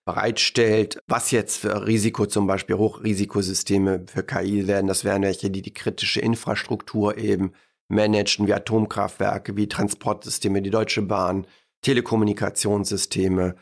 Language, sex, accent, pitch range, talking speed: German, male, German, 100-110 Hz, 125 wpm